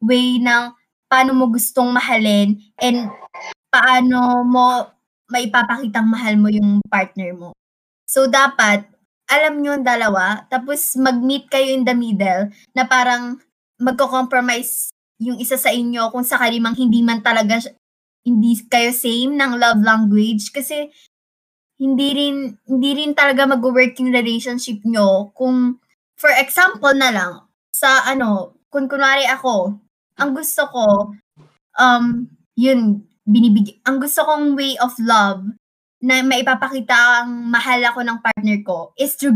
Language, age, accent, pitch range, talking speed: English, 20-39, Filipino, 220-265 Hz, 135 wpm